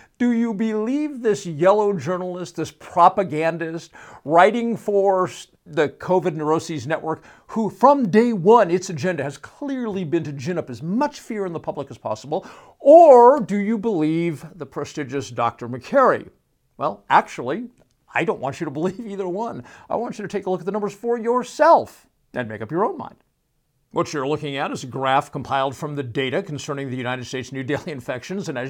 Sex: male